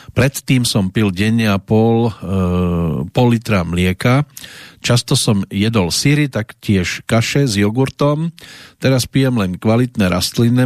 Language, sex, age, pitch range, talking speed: Slovak, male, 40-59, 100-125 Hz, 135 wpm